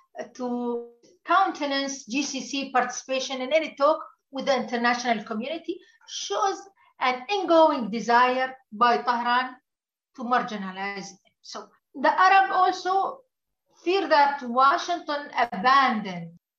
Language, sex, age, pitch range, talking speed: English, female, 50-69, 245-330 Hz, 100 wpm